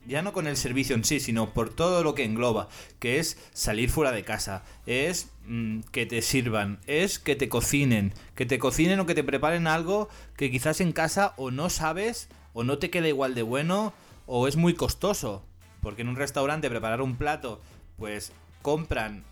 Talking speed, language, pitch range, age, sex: 195 wpm, Spanish, 110-145 Hz, 30-49, male